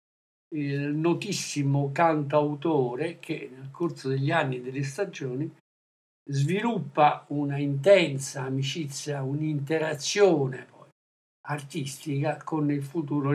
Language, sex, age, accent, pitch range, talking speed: Italian, male, 60-79, native, 140-165 Hz, 95 wpm